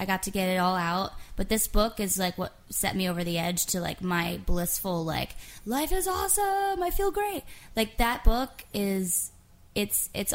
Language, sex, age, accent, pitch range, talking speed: English, female, 20-39, American, 170-240 Hz, 205 wpm